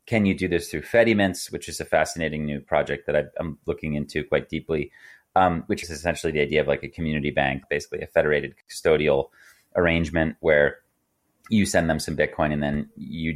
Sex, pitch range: male, 75-95 Hz